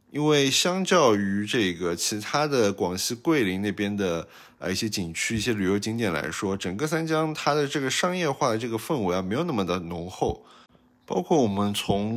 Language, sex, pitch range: Chinese, male, 90-120 Hz